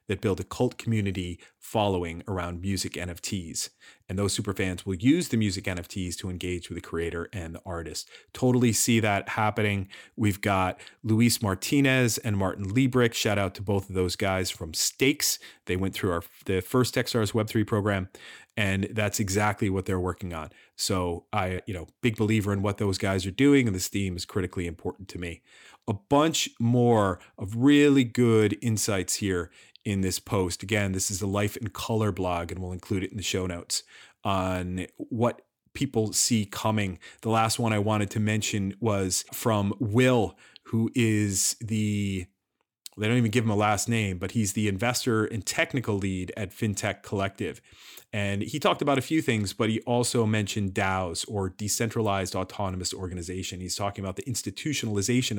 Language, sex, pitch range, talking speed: English, male, 95-115 Hz, 180 wpm